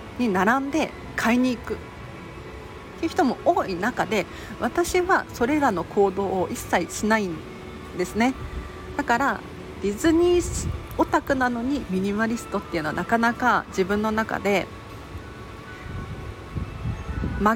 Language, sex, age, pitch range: Japanese, female, 40-59, 190-290 Hz